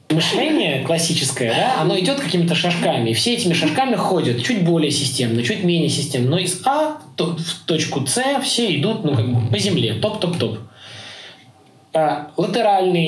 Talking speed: 150 wpm